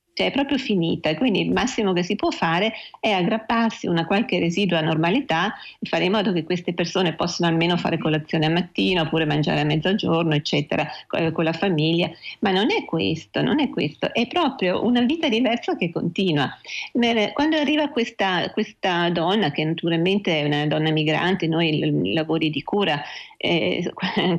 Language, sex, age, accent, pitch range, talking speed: Italian, female, 40-59, native, 160-210 Hz, 170 wpm